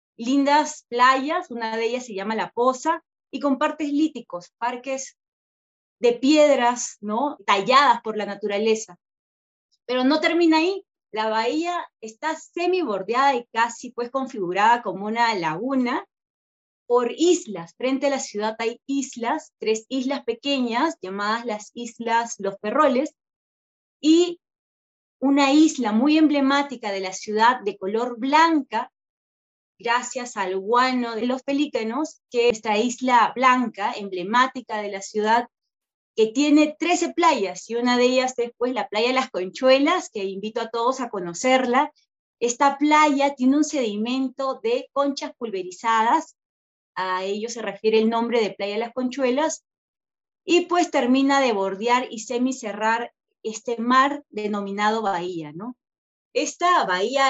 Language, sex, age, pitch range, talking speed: Spanish, female, 30-49, 220-280 Hz, 135 wpm